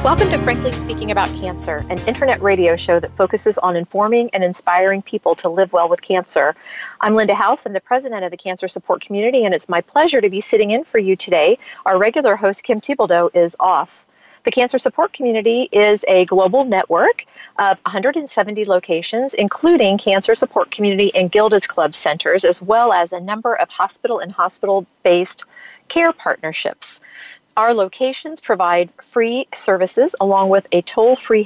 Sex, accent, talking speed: female, American, 170 wpm